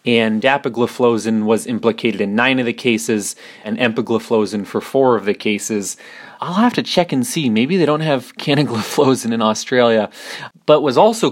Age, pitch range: 30-49, 110-140 Hz